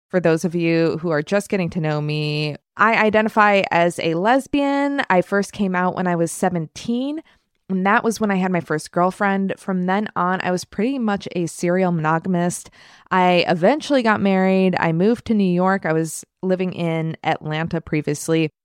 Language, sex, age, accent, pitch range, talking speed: English, female, 20-39, American, 170-220 Hz, 185 wpm